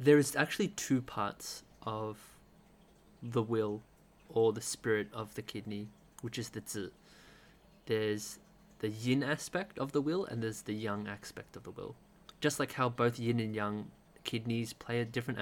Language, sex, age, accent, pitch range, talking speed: English, male, 20-39, Australian, 110-145 Hz, 170 wpm